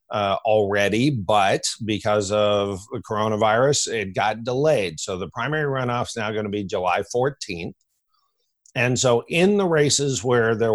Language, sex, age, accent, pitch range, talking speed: English, male, 50-69, American, 110-140 Hz, 155 wpm